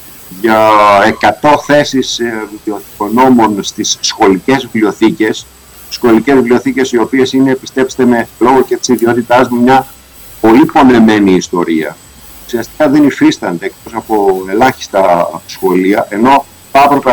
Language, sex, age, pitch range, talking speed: Greek, male, 50-69, 110-185 Hz, 110 wpm